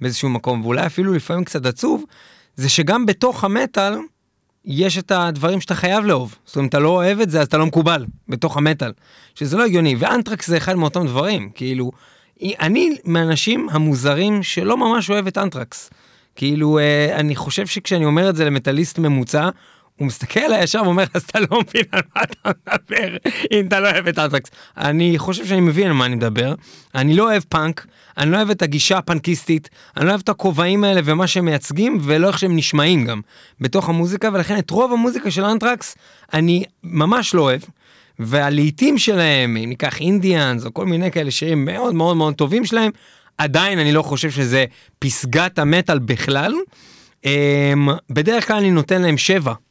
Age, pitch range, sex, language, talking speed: 30-49, 145-195 Hz, male, Hebrew, 175 wpm